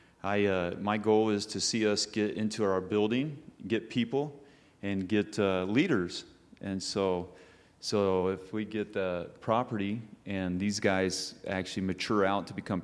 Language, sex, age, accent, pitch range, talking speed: English, male, 30-49, American, 90-110 Hz, 160 wpm